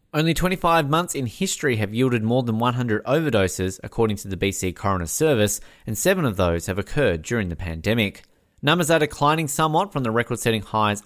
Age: 30-49